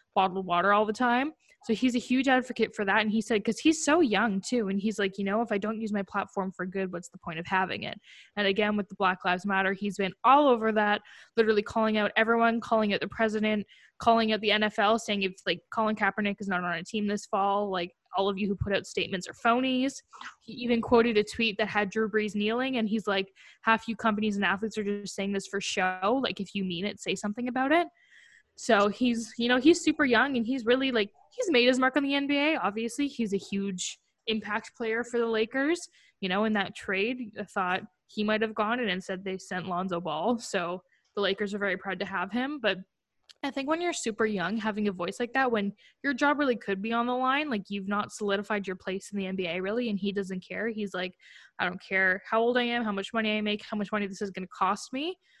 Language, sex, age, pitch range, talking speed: English, female, 10-29, 195-235 Hz, 245 wpm